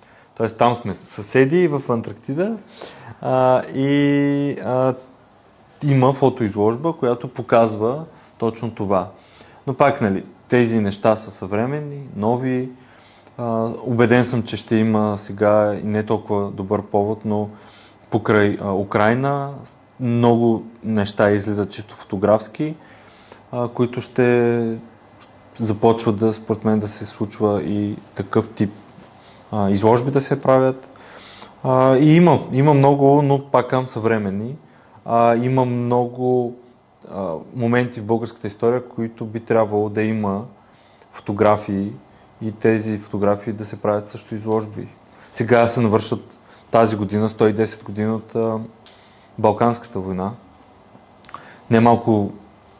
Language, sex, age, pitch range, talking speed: Bulgarian, male, 30-49, 105-125 Hz, 110 wpm